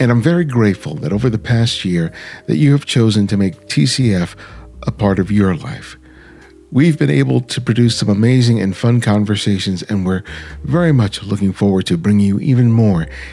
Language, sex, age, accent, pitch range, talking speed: English, male, 50-69, American, 95-130 Hz, 190 wpm